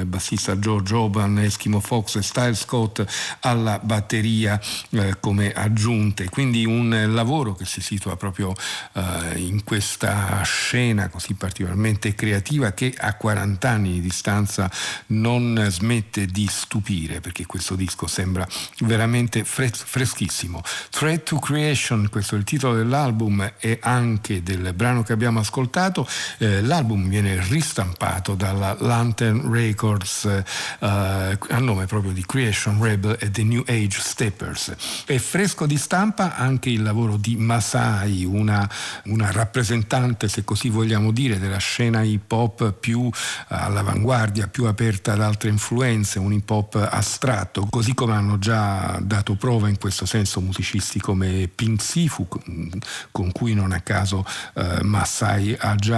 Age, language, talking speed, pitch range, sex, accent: 50-69, Italian, 140 wpm, 100-115 Hz, male, native